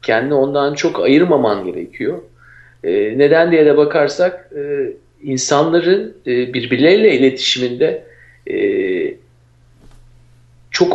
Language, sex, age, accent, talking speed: Turkish, male, 50-69, native, 95 wpm